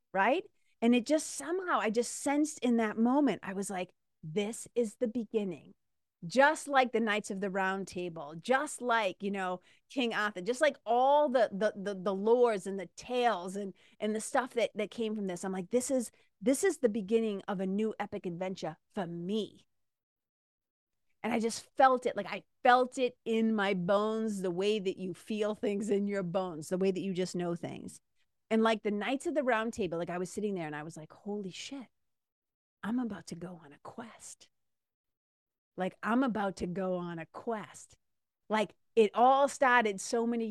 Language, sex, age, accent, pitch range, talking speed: English, female, 30-49, American, 190-245 Hz, 200 wpm